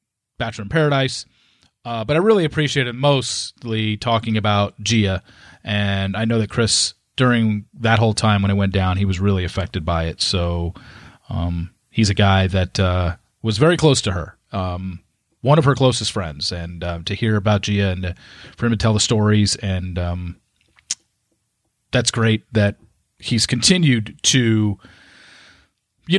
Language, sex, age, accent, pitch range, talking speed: English, male, 30-49, American, 95-115 Hz, 165 wpm